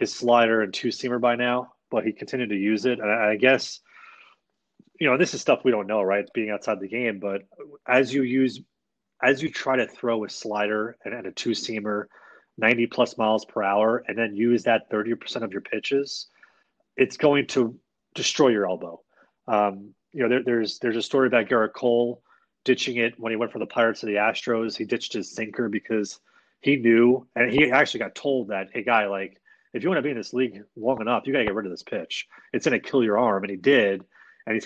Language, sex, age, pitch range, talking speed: English, male, 30-49, 110-130 Hz, 225 wpm